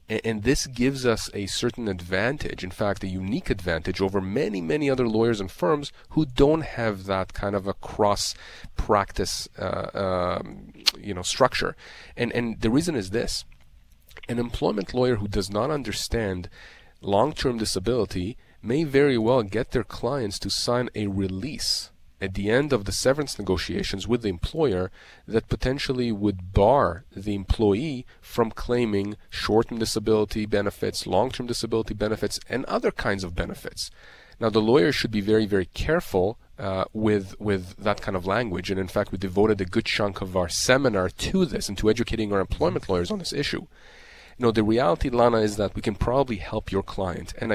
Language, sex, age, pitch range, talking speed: English, male, 30-49, 95-120 Hz, 175 wpm